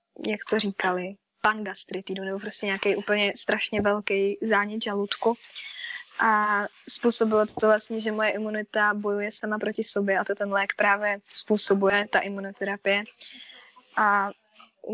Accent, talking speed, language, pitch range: native, 135 wpm, Czech, 200-220 Hz